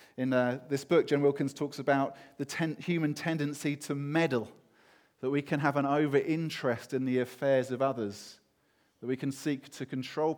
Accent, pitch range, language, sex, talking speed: British, 130-155 Hz, English, male, 185 wpm